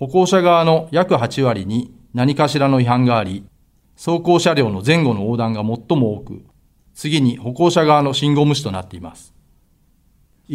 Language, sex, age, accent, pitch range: Japanese, male, 40-59, native, 110-155 Hz